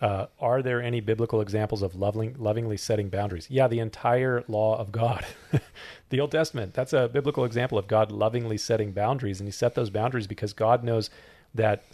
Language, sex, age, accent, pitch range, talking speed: English, male, 40-59, American, 110-135 Hz, 185 wpm